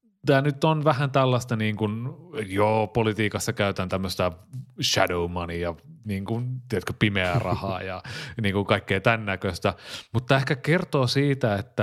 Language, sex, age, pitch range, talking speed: Finnish, male, 30-49, 95-120 Hz, 150 wpm